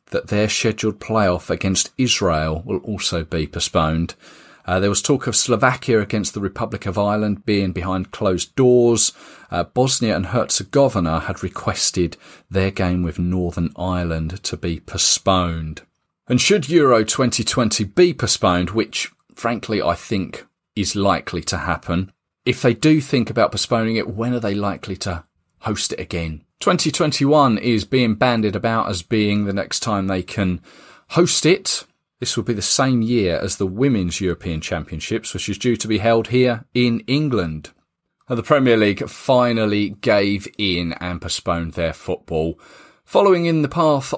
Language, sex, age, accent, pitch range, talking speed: English, male, 40-59, British, 90-120 Hz, 160 wpm